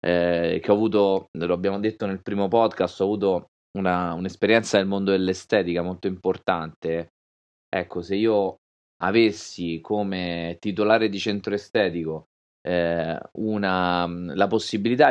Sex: male